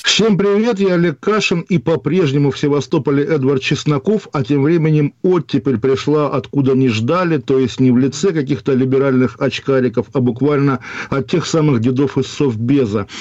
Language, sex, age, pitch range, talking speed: Russian, male, 50-69, 130-150 Hz, 160 wpm